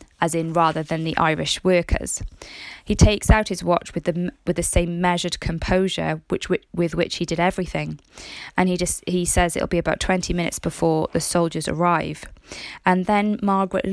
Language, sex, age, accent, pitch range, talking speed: English, female, 20-39, British, 165-185 Hz, 180 wpm